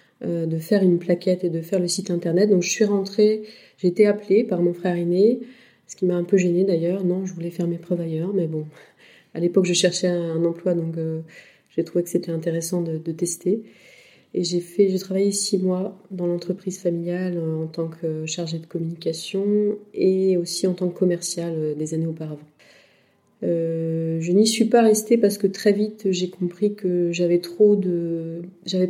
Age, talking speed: 30-49, 195 wpm